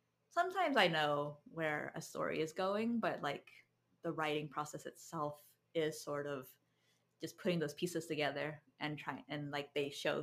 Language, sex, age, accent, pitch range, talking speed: English, female, 20-39, American, 150-190 Hz, 165 wpm